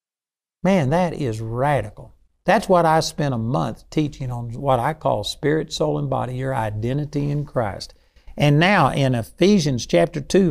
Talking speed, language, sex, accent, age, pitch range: 165 wpm, English, male, American, 60-79, 125-165 Hz